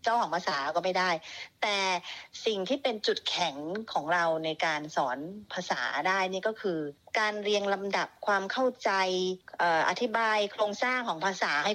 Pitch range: 175-225 Hz